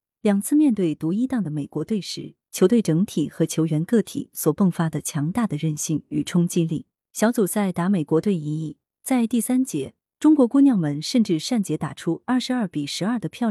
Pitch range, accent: 155-230 Hz, native